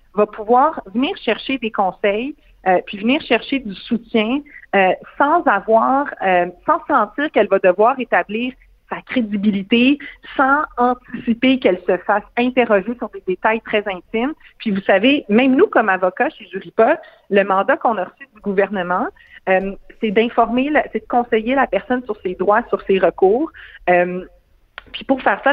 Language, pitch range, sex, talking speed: French, 185-245 Hz, female, 165 wpm